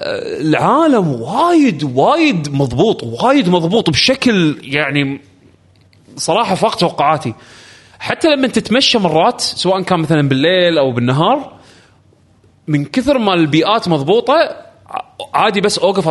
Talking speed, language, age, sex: 110 wpm, Arabic, 20-39, male